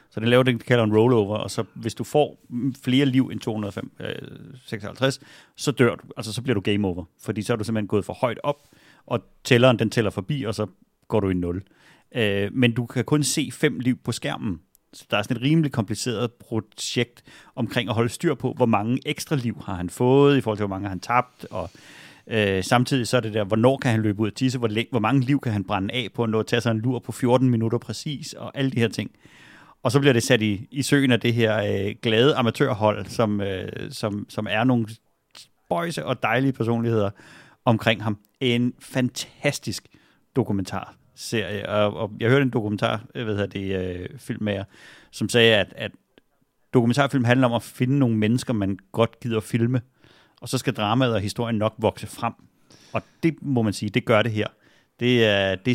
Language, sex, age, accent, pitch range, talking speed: Danish, male, 40-59, native, 105-130 Hz, 220 wpm